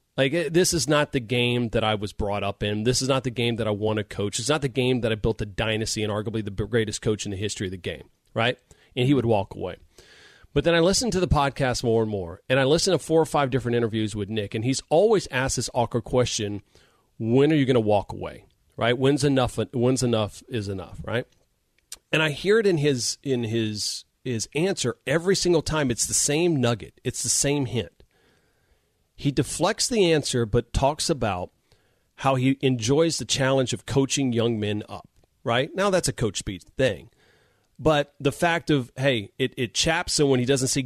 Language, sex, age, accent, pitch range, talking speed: English, male, 40-59, American, 110-145 Hz, 220 wpm